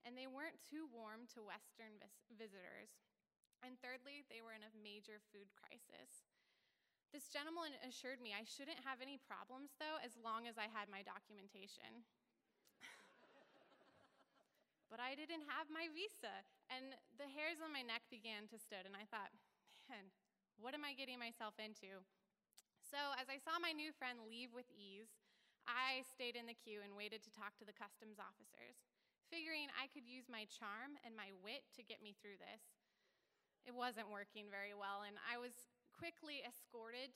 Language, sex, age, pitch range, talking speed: English, female, 20-39, 220-275 Hz, 170 wpm